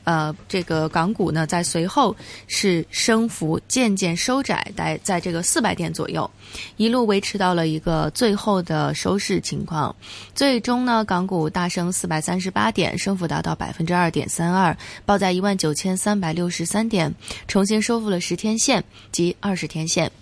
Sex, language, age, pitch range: female, Chinese, 20-39, 165-200 Hz